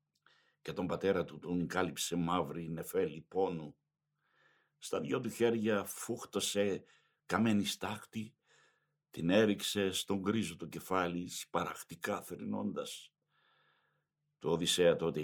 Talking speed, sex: 105 wpm, male